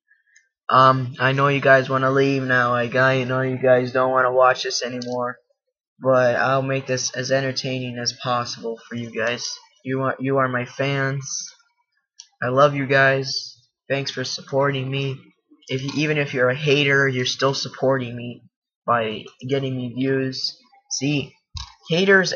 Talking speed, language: 165 wpm, English